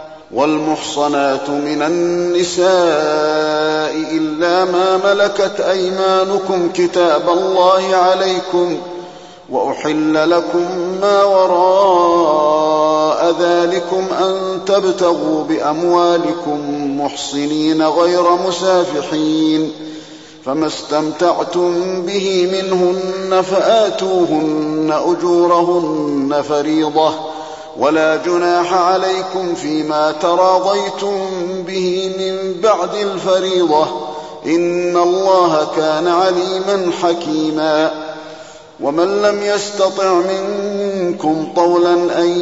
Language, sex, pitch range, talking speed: Arabic, male, 155-185 Hz, 70 wpm